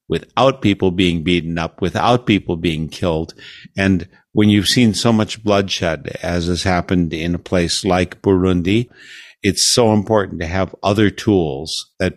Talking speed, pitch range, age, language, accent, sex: 160 wpm, 90-110 Hz, 60-79, English, American, male